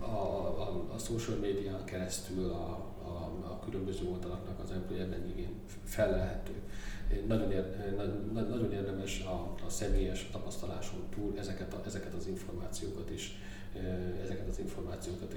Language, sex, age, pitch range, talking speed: Hungarian, male, 40-59, 90-100 Hz, 130 wpm